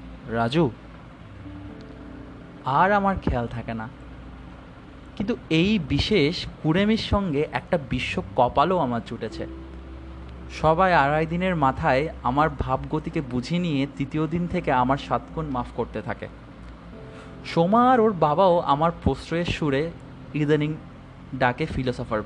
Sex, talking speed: male, 110 wpm